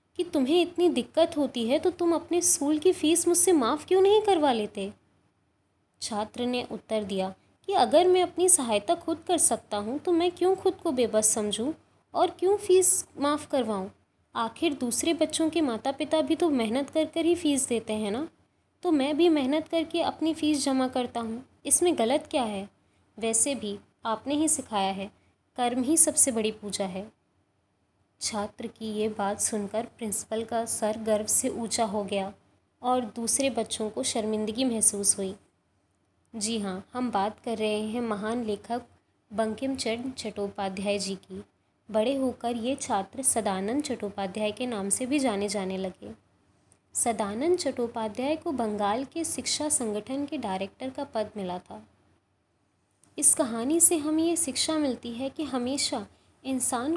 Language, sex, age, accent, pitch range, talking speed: Hindi, female, 20-39, native, 210-300 Hz, 165 wpm